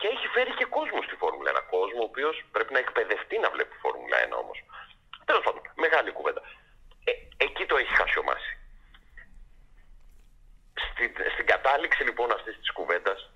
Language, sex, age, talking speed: Greek, male, 40-59, 160 wpm